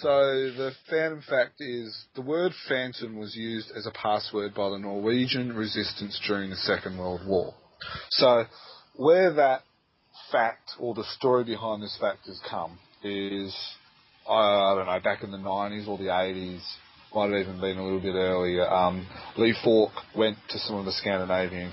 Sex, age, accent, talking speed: male, 30-49, Australian, 170 wpm